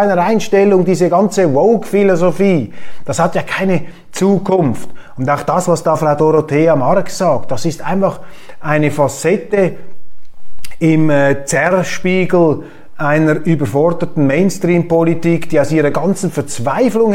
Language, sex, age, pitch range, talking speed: German, male, 30-49, 150-215 Hz, 125 wpm